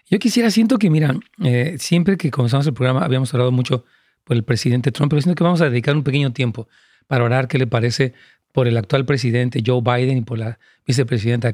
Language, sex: Spanish, male